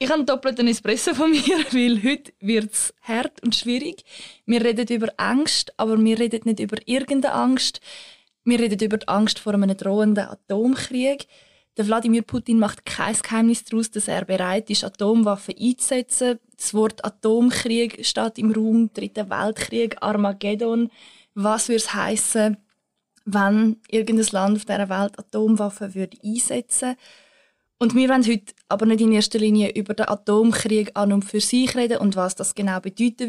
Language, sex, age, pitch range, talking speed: German, female, 20-39, 210-240 Hz, 165 wpm